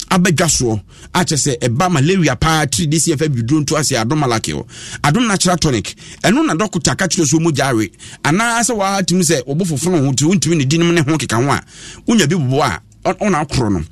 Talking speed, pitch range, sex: 180 wpm, 135-180 Hz, male